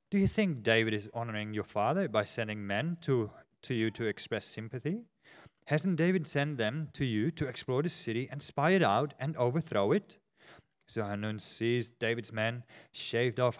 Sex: male